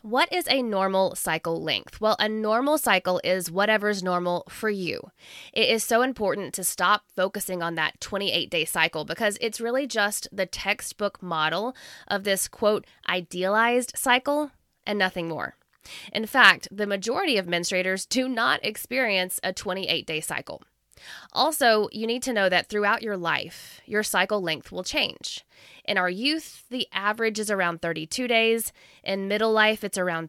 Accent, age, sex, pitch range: American, 20-39, female, 175-225 Hz